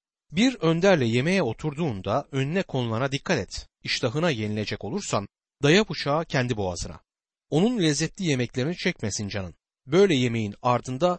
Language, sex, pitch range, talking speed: Turkish, male, 115-175 Hz, 125 wpm